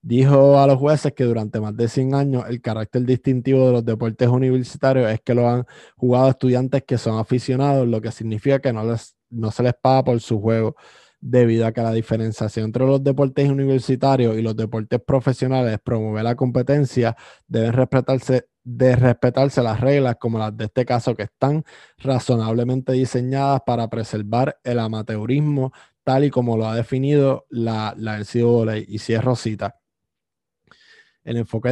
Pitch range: 115-130 Hz